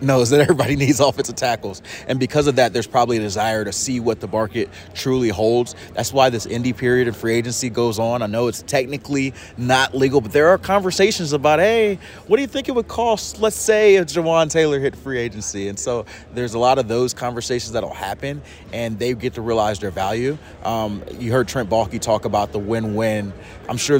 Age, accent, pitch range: 30-49, American, 110-130 Hz